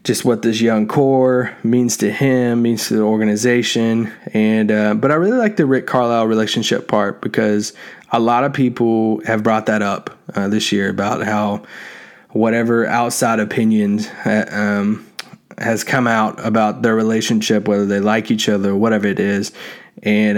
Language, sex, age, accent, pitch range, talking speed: English, male, 20-39, American, 110-130 Hz, 170 wpm